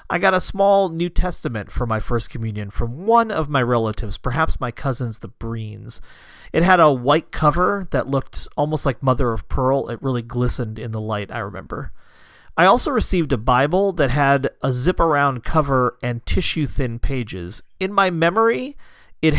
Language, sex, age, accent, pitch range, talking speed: English, male, 40-59, American, 115-155 Hz, 175 wpm